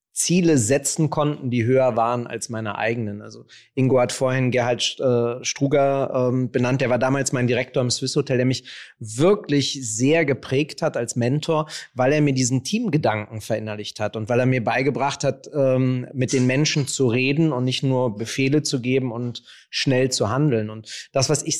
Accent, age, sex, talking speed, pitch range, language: German, 30-49, male, 185 wpm, 120-150 Hz, German